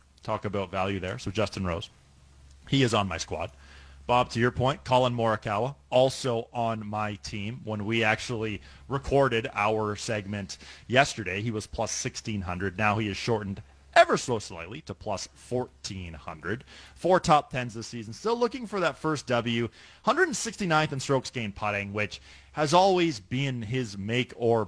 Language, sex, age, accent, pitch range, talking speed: English, male, 30-49, American, 100-125 Hz, 160 wpm